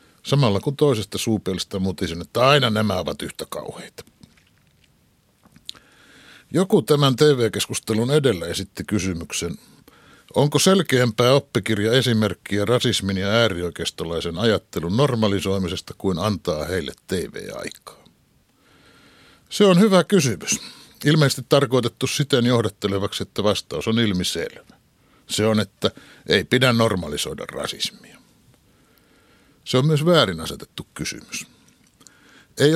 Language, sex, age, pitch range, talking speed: Finnish, male, 60-79, 100-140 Hz, 100 wpm